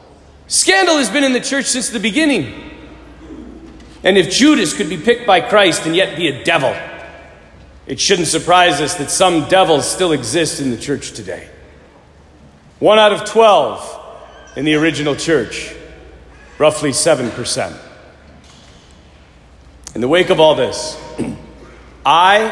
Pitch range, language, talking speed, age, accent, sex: 115-180 Hz, English, 140 wpm, 40-59, American, male